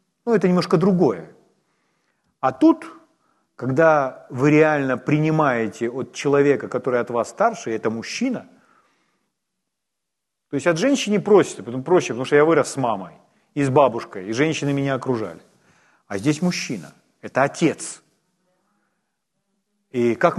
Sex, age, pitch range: male, 40-59, 140-205 Hz